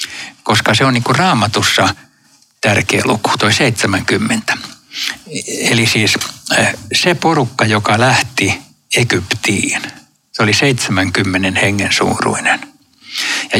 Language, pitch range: Finnish, 100-120 Hz